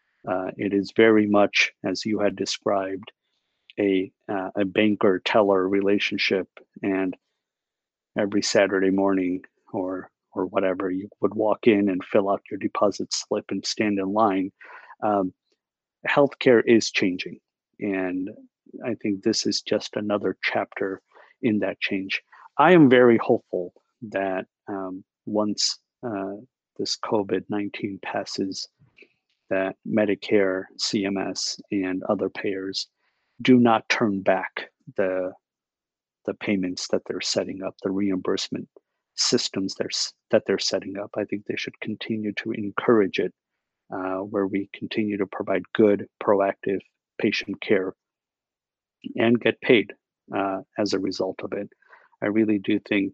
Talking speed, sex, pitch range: 135 wpm, male, 95-105 Hz